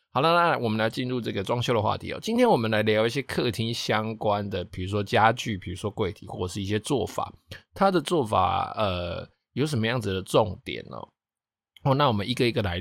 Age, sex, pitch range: 20-39, male, 95-120 Hz